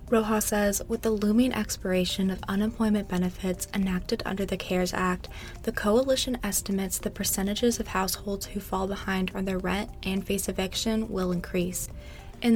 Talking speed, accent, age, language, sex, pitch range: 160 wpm, American, 20-39, English, female, 185-215 Hz